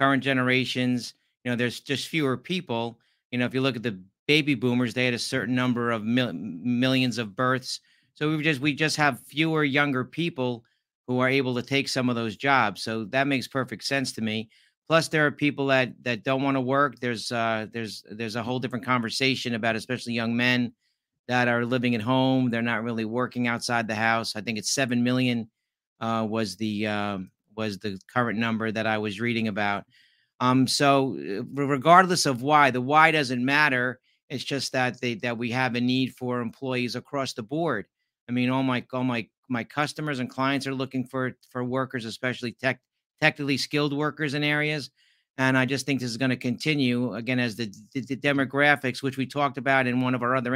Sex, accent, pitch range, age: male, American, 120-140 Hz, 50-69